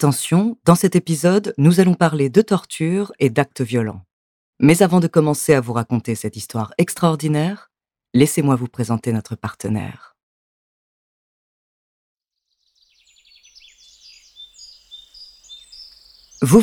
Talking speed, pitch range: 100 wpm, 125-180 Hz